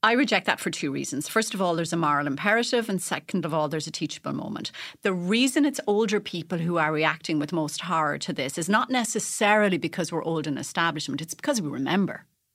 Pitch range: 155-215 Hz